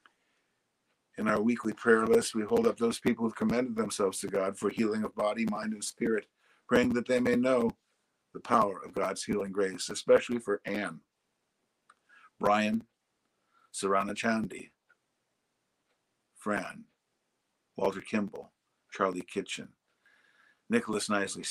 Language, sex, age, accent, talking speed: English, male, 60-79, American, 130 wpm